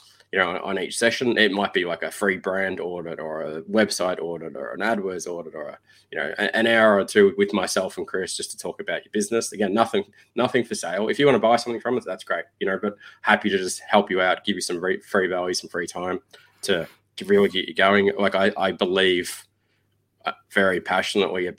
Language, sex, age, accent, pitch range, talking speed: English, male, 20-39, Australian, 95-115 Hz, 230 wpm